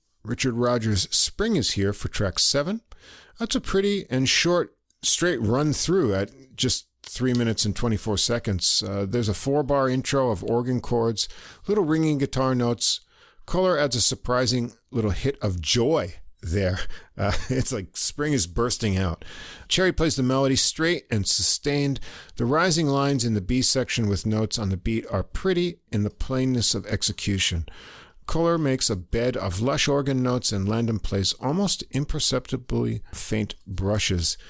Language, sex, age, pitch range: English, male, 50-69, 105-140 Hz